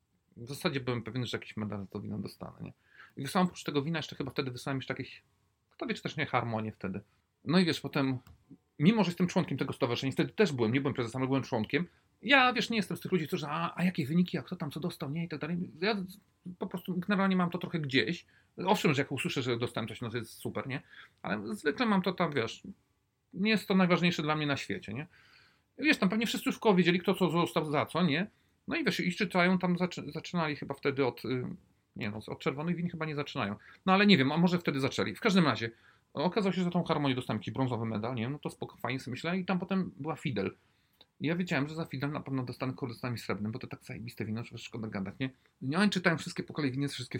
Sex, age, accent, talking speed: male, 40-59, native, 245 wpm